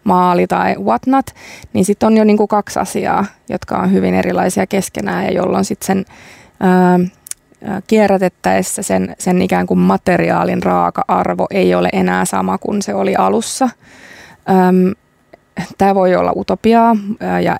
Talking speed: 145 wpm